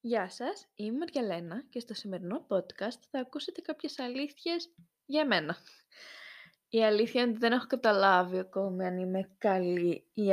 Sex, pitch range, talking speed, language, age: female, 190-255 Hz, 150 wpm, Greek, 20-39